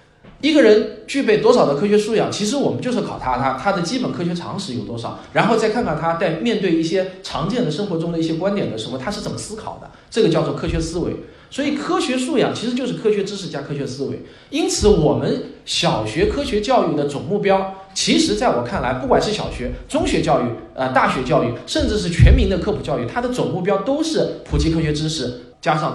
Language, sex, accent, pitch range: Chinese, male, native, 150-245 Hz